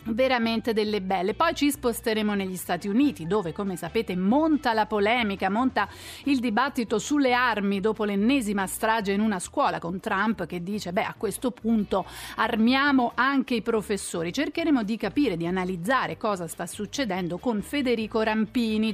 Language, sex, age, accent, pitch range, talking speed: Italian, female, 40-59, native, 195-250 Hz, 155 wpm